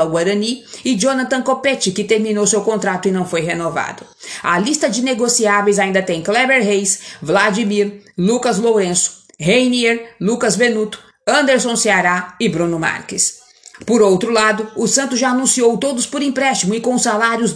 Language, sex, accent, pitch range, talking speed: Portuguese, female, Brazilian, 185-230 Hz, 150 wpm